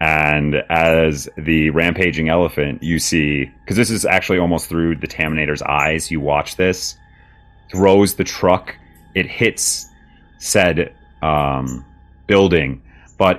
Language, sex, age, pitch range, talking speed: English, male, 30-49, 75-90 Hz, 125 wpm